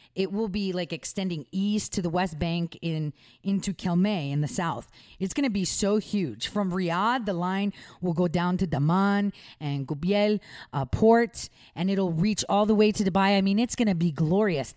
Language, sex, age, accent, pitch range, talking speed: English, female, 40-59, American, 145-200 Hz, 205 wpm